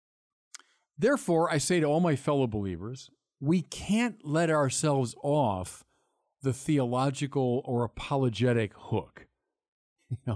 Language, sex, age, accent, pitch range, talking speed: English, male, 50-69, American, 110-150 Hz, 110 wpm